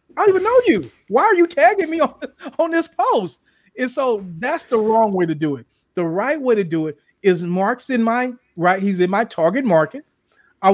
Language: English